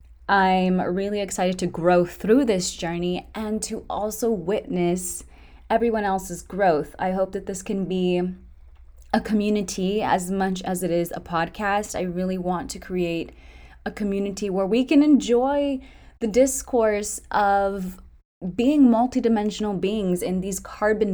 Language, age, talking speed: English, 20-39, 140 wpm